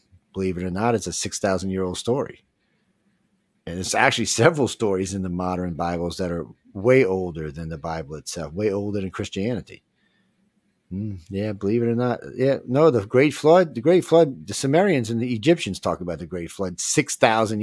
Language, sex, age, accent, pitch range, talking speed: English, male, 50-69, American, 90-120 Hz, 185 wpm